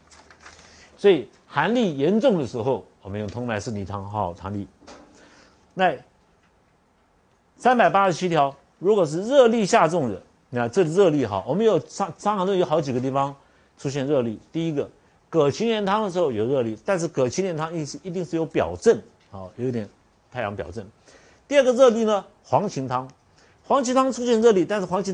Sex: male